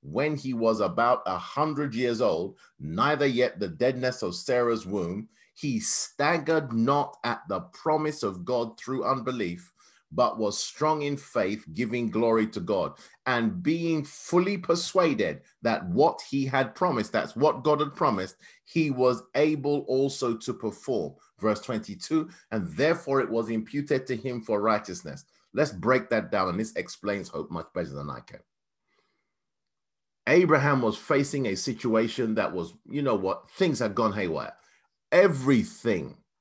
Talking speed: 155 wpm